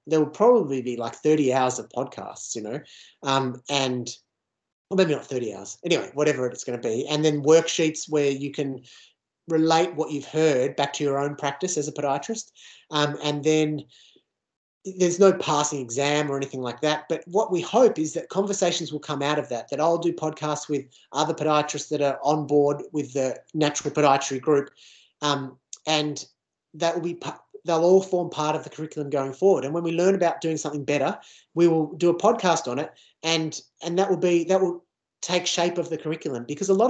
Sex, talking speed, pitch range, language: male, 205 wpm, 140-170 Hz, Spanish